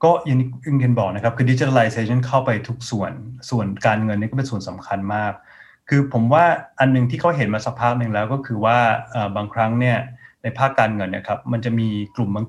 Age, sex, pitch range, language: 20-39, male, 105-130 Hz, Thai